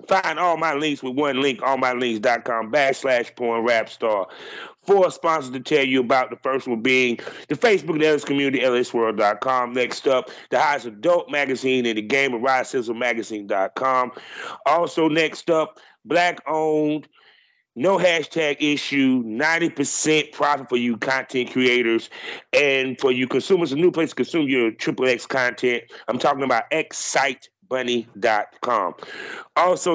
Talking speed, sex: 150 wpm, male